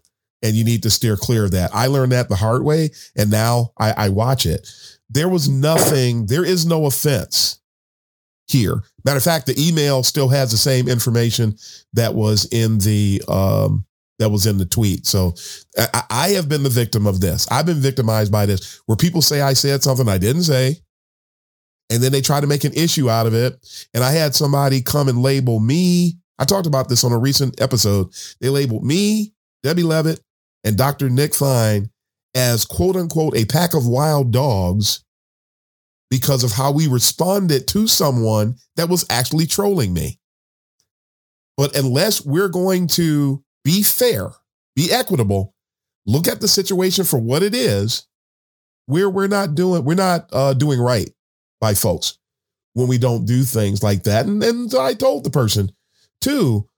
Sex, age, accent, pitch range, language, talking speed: male, 40-59, American, 110-155 Hz, English, 180 wpm